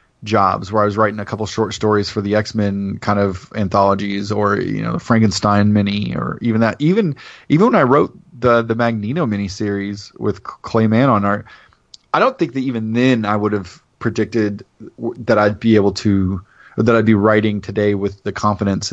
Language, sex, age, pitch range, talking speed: English, male, 30-49, 100-120 Hz, 195 wpm